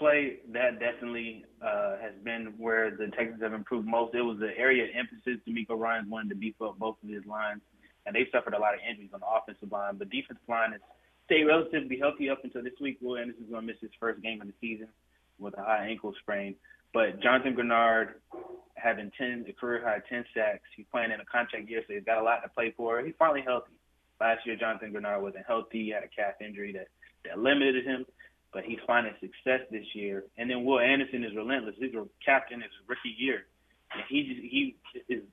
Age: 20-39